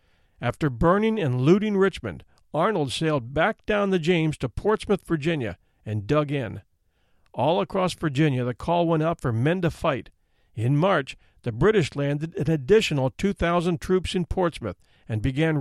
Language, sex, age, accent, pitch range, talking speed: English, male, 50-69, American, 130-180 Hz, 160 wpm